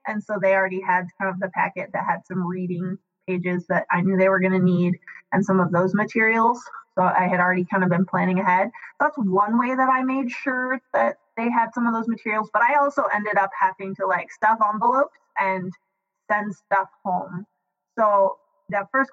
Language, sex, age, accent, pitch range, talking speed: English, female, 20-39, American, 190-230 Hz, 210 wpm